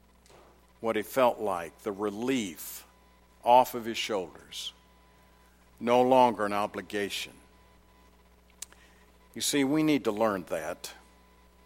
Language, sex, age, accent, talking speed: English, male, 50-69, American, 110 wpm